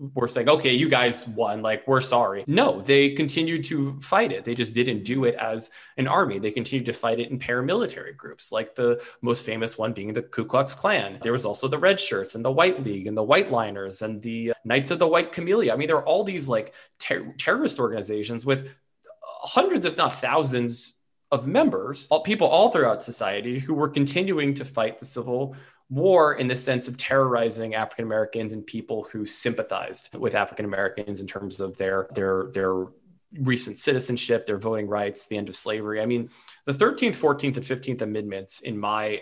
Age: 20-39